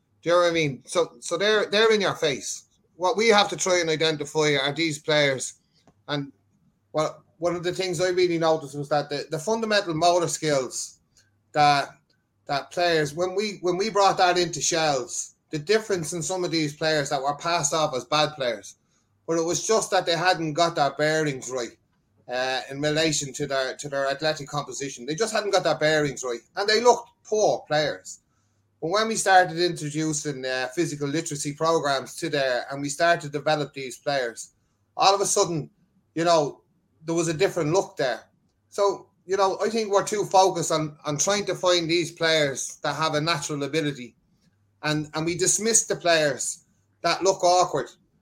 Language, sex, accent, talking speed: English, male, Irish, 195 wpm